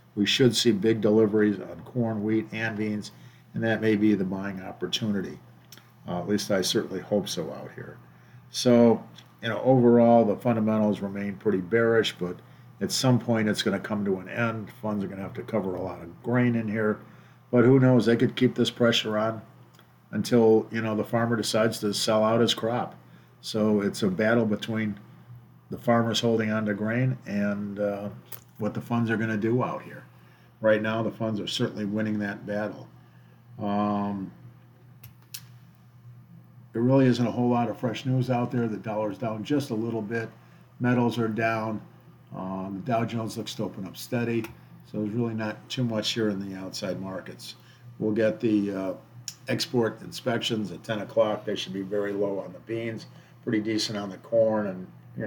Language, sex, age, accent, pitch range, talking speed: English, male, 50-69, American, 105-120 Hz, 190 wpm